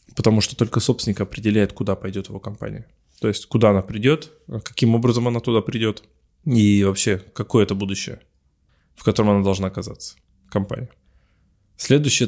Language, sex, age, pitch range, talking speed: Russian, male, 20-39, 95-115 Hz, 150 wpm